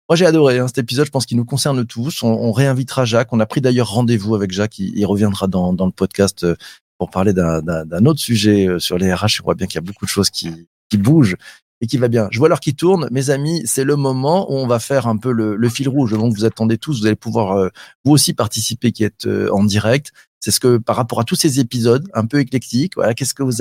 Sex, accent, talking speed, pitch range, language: male, French, 265 wpm, 100-130 Hz, French